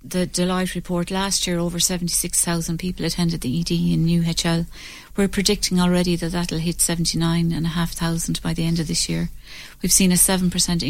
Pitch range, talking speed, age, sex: 165-180 Hz, 170 wpm, 40-59, female